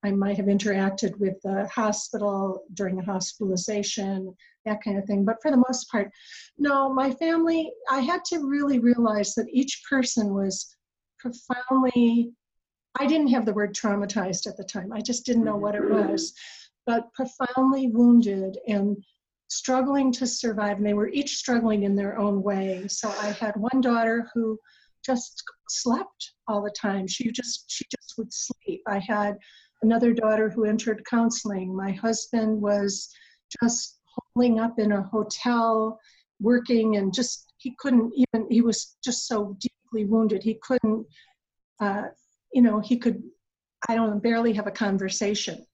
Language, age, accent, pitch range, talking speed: English, 50-69, American, 205-245 Hz, 160 wpm